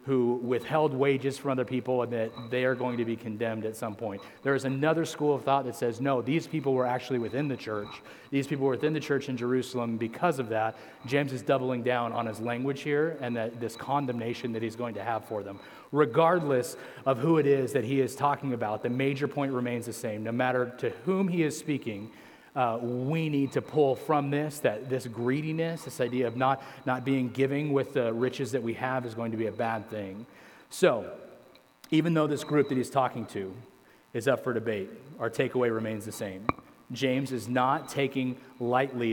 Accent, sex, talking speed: American, male, 215 wpm